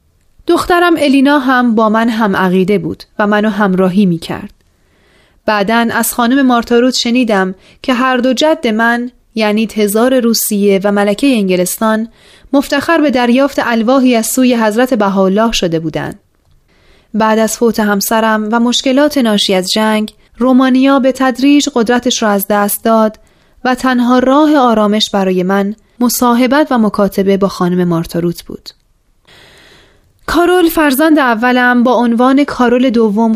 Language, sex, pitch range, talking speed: Persian, female, 205-260 Hz, 135 wpm